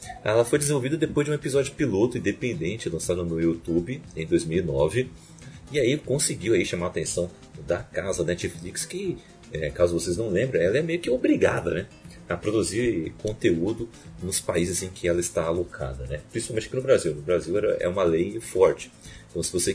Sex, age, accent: male, 40-59, Brazilian